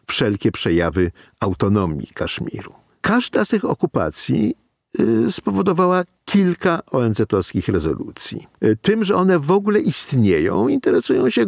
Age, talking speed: 50-69, 115 wpm